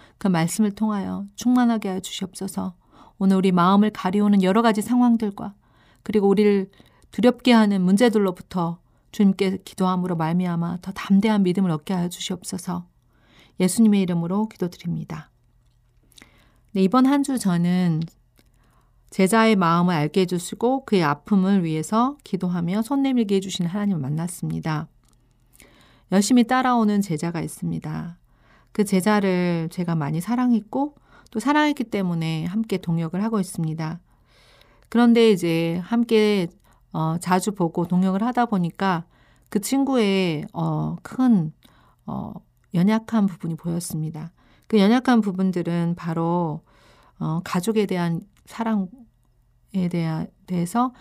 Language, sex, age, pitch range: Korean, female, 40-59, 165-215 Hz